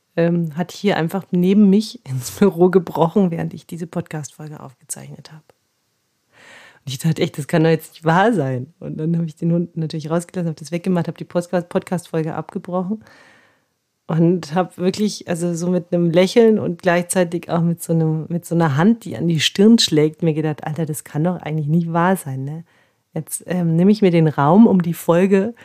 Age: 40-59